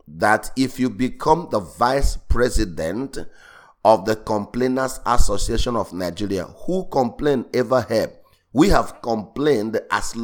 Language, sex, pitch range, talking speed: English, male, 100-130 Hz, 125 wpm